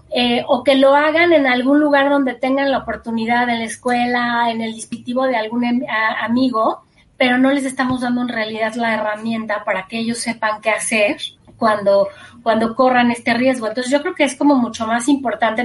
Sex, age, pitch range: female, 30-49, 230-285 Hz